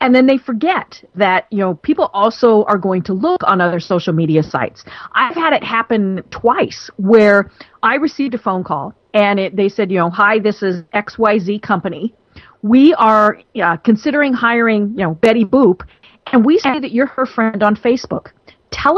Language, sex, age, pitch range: English, female, 40-59, 195-265 Hz